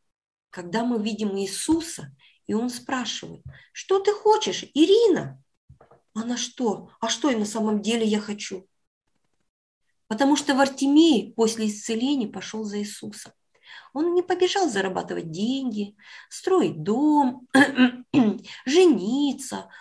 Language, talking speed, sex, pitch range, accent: Russian, 110 wpm, female, 185-270 Hz, native